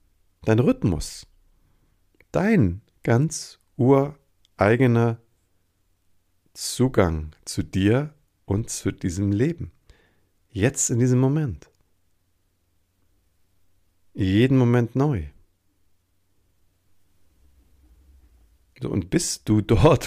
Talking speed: 70 wpm